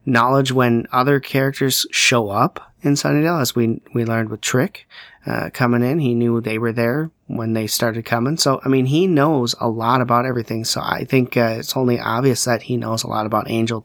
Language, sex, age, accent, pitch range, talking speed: English, male, 30-49, American, 115-130 Hz, 210 wpm